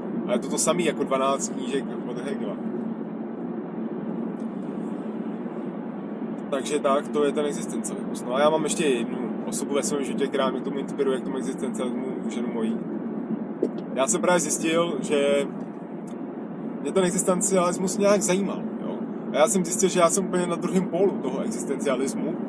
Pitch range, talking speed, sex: 195-230 Hz, 155 wpm, male